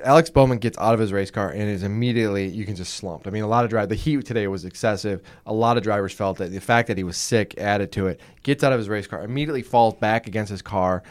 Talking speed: 290 wpm